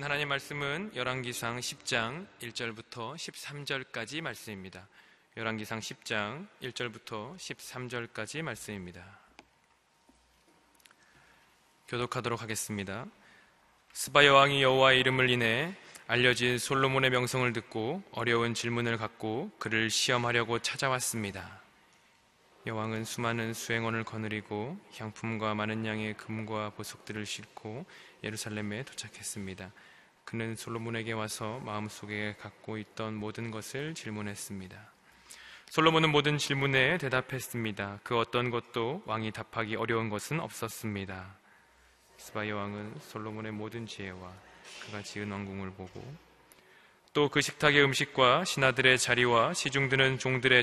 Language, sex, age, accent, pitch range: Korean, male, 20-39, native, 110-130 Hz